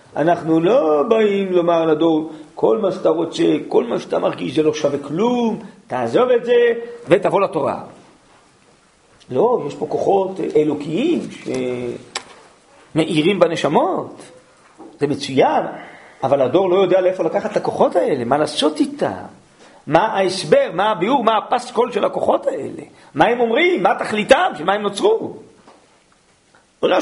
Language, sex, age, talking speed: Hebrew, male, 40-59, 140 wpm